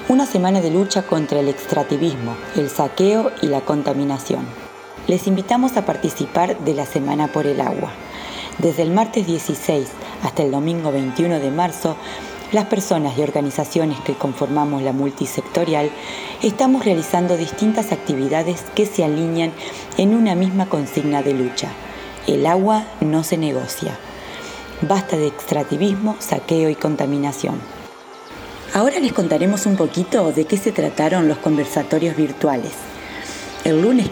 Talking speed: 135 wpm